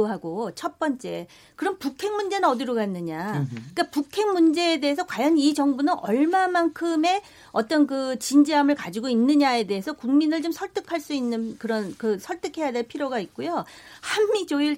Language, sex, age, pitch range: Korean, female, 40-59, 240-335 Hz